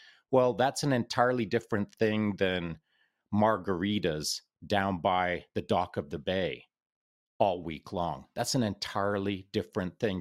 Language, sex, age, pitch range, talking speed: English, male, 30-49, 85-110 Hz, 135 wpm